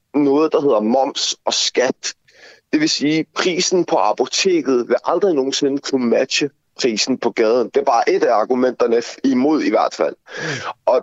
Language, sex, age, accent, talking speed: Danish, male, 30-49, native, 170 wpm